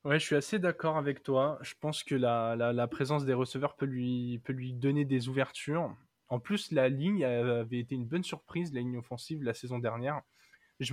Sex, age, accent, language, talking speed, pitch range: male, 20-39, French, French, 215 wpm, 125-155 Hz